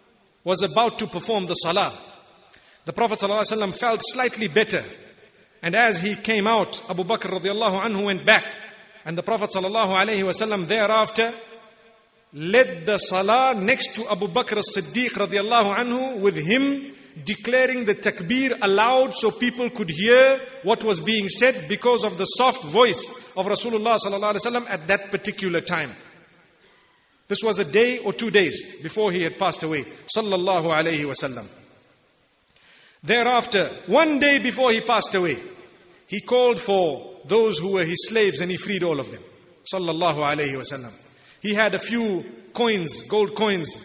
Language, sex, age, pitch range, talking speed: English, male, 50-69, 190-235 Hz, 150 wpm